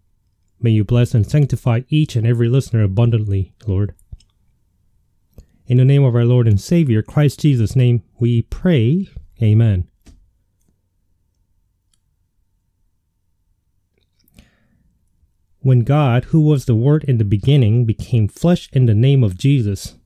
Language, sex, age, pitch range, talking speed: English, male, 30-49, 95-130 Hz, 125 wpm